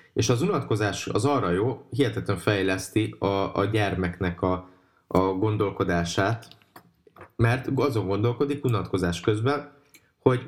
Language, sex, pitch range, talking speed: Hungarian, male, 100-130 Hz, 115 wpm